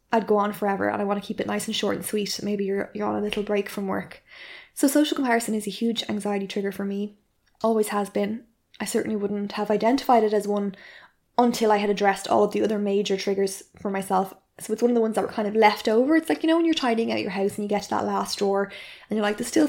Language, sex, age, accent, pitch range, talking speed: English, female, 20-39, Irish, 200-230 Hz, 275 wpm